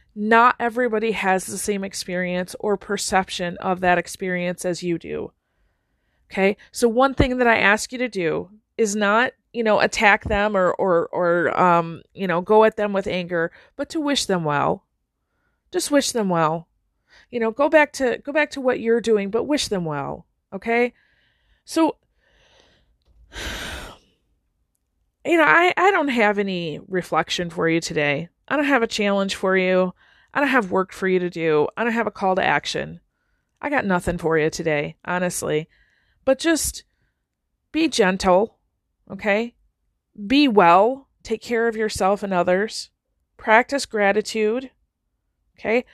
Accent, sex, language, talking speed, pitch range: American, female, English, 160 wpm, 180-245 Hz